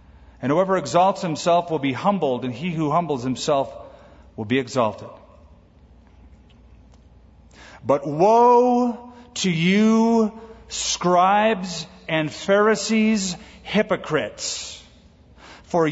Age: 40-59